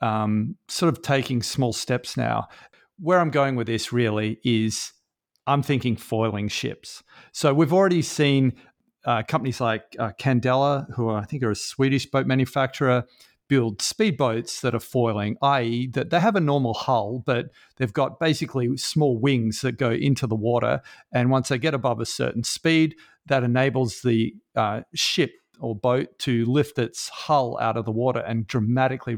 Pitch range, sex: 115-140 Hz, male